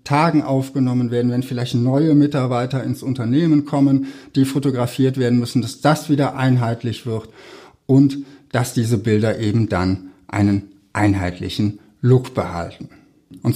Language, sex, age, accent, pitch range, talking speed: German, male, 60-79, German, 125-145 Hz, 135 wpm